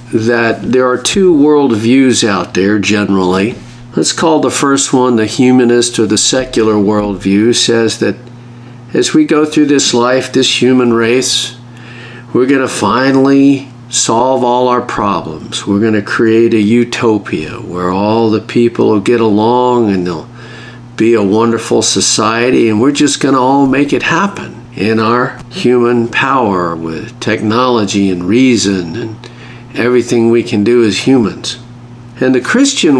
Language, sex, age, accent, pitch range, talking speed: English, male, 50-69, American, 110-125 Hz, 155 wpm